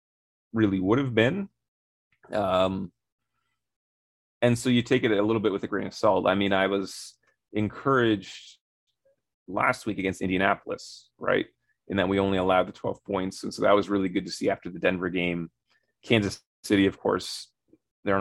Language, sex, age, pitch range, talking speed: English, male, 30-49, 95-110 Hz, 175 wpm